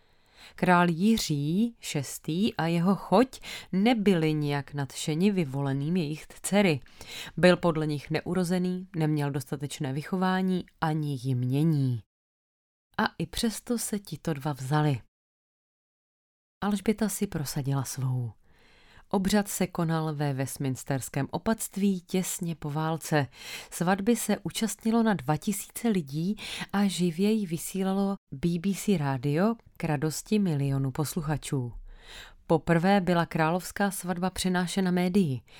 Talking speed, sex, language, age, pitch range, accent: 110 wpm, female, Czech, 30-49, 150-195 Hz, native